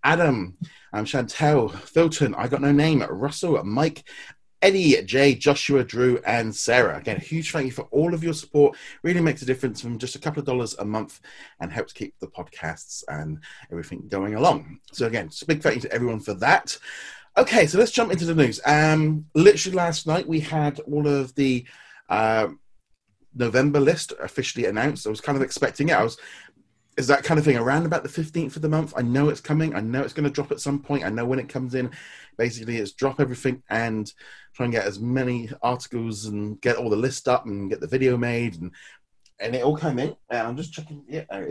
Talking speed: 220 wpm